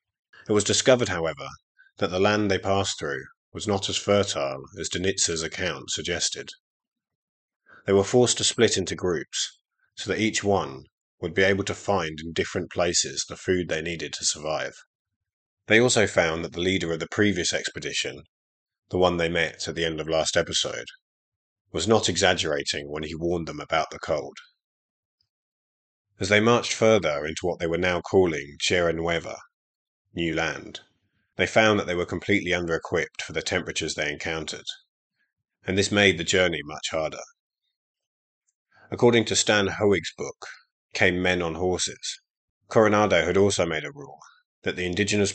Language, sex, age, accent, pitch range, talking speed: English, male, 30-49, British, 80-105 Hz, 165 wpm